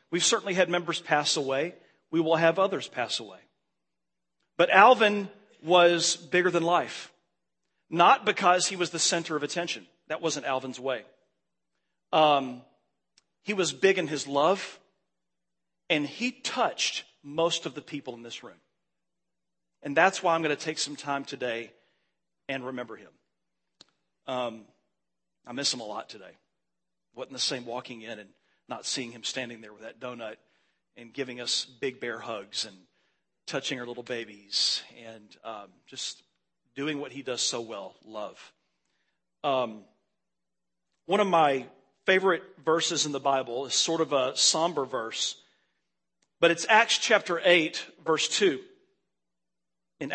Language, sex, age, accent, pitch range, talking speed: English, male, 40-59, American, 115-175 Hz, 150 wpm